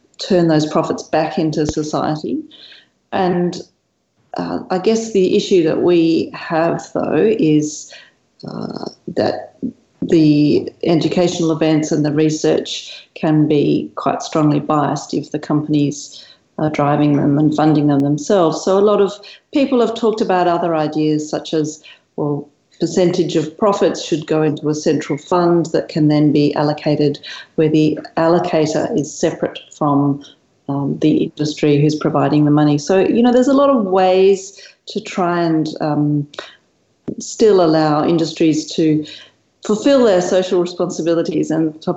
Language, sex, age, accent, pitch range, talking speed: English, female, 40-59, Australian, 150-180 Hz, 145 wpm